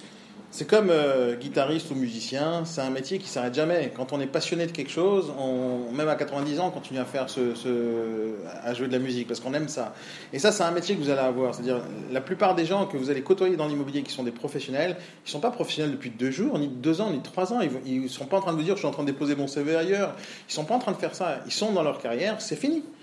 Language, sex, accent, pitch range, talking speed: French, male, French, 130-175 Hz, 295 wpm